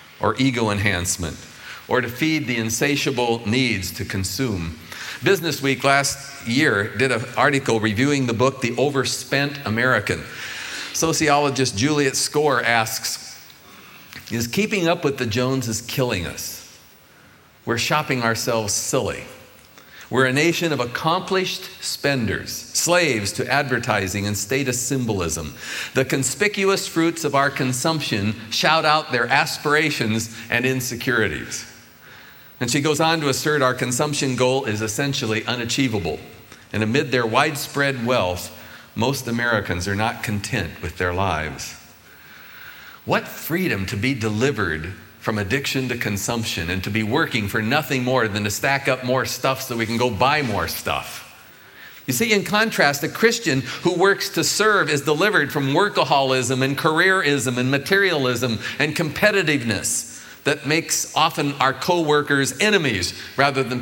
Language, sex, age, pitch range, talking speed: English, male, 40-59, 110-145 Hz, 135 wpm